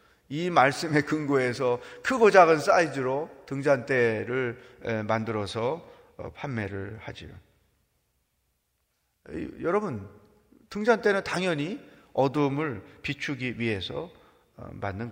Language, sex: Korean, male